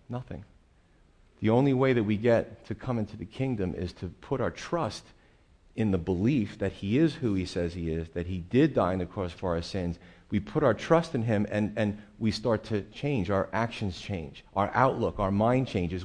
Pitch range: 100-125 Hz